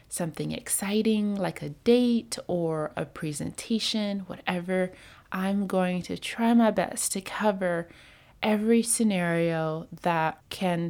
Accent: American